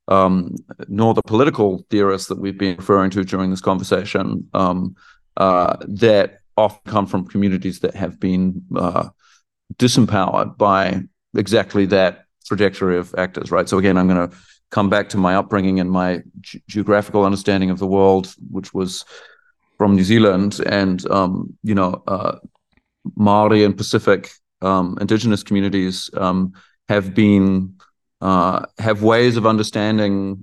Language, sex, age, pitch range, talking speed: English, male, 40-59, 95-105 Hz, 145 wpm